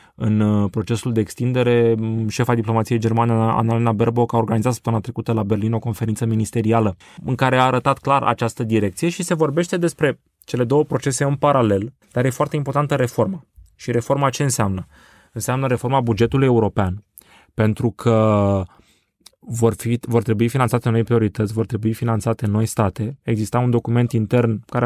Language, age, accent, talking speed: Romanian, 20-39, native, 155 wpm